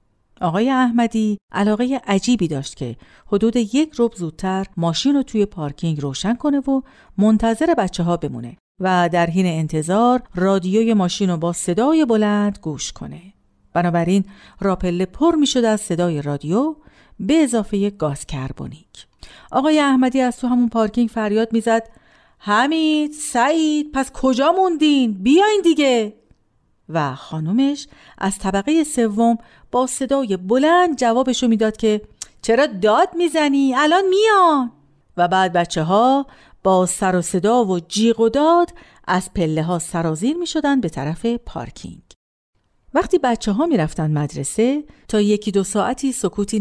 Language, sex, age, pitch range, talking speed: Persian, female, 50-69, 175-260 Hz, 140 wpm